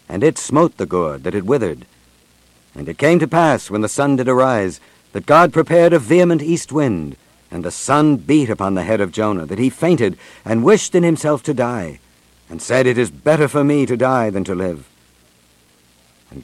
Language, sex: English, male